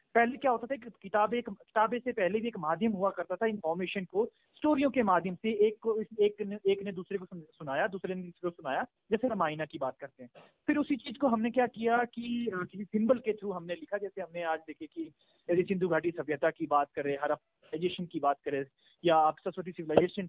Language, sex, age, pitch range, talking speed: Hindi, male, 30-49, 165-245 Hz, 225 wpm